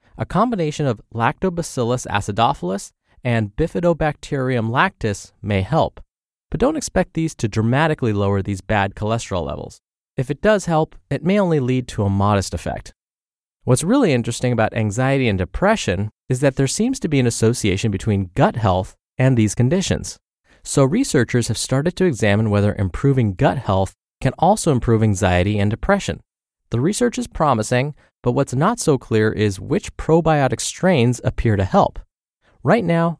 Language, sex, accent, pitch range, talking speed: English, male, American, 105-155 Hz, 160 wpm